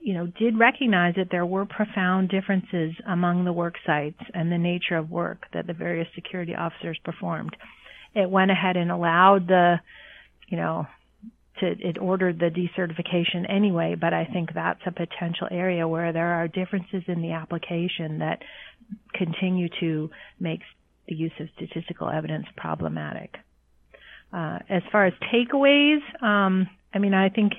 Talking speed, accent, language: 155 wpm, American, English